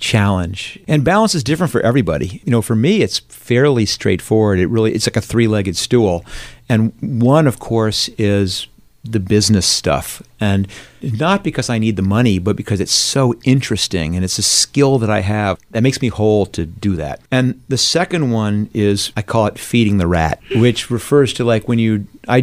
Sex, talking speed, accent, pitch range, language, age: male, 195 wpm, American, 100-130 Hz, English, 50-69